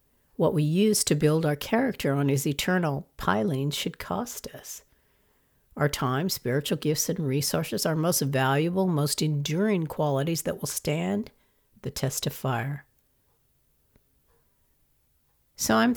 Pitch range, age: 135-185 Hz, 60-79